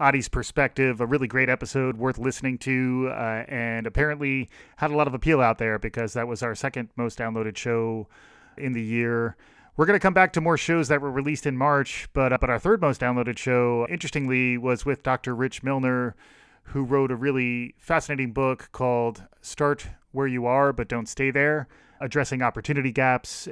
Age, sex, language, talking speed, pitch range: 30-49, male, English, 190 wpm, 120-135 Hz